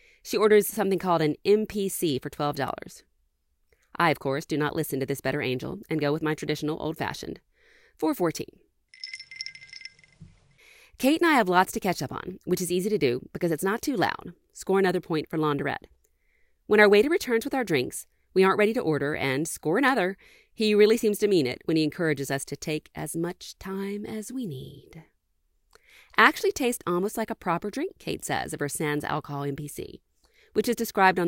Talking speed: 190 wpm